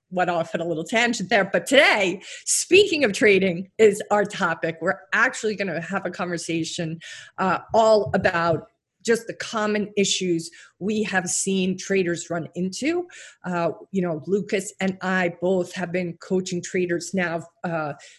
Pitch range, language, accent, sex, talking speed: 170-200 Hz, English, American, female, 160 wpm